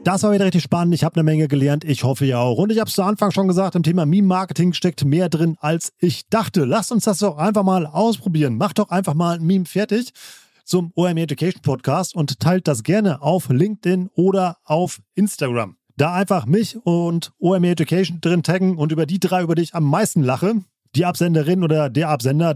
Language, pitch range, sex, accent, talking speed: German, 145-185 Hz, male, German, 215 wpm